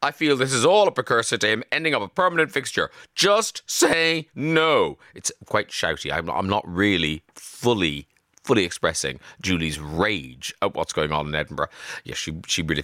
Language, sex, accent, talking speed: English, male, British, 190 wpm